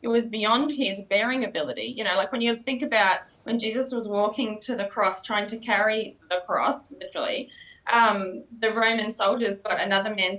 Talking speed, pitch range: 190 wpm, 205-260 Hz